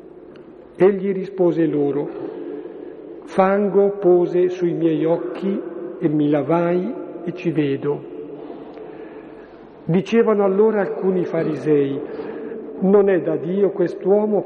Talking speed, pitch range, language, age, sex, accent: 95 wpm, 155-200 Hz, Italian, 50-69, male, native